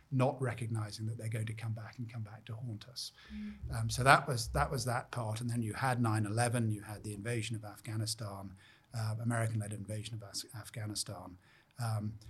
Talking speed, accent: 190 wpm, British